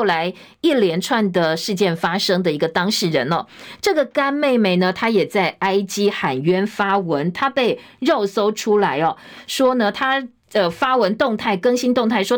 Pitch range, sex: 180-245 Hz, female